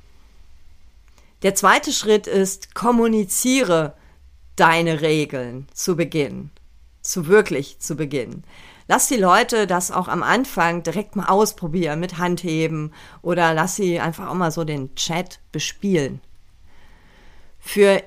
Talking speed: 120 wpm